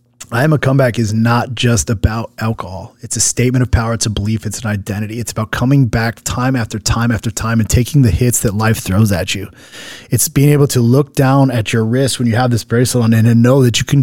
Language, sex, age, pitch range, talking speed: English, male, 20-39, 120-155 Hz, 250 wpm